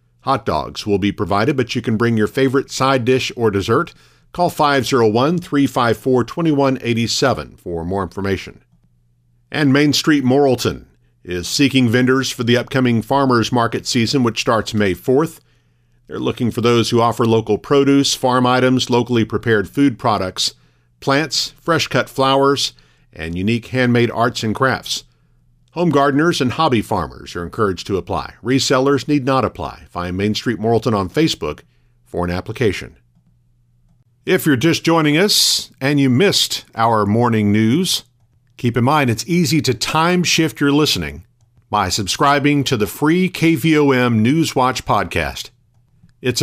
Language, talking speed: English, 145 wpm